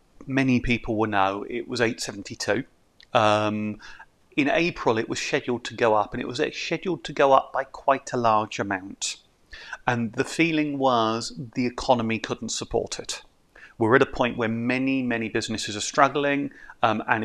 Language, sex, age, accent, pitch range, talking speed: English, male, 30-49, British, 110-135 Hz, 170 wpm